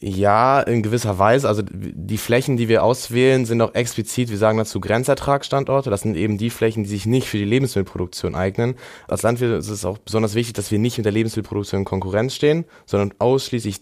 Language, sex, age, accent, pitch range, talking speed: German, male, 20-39, German, 100-115 Hz, 205 wpm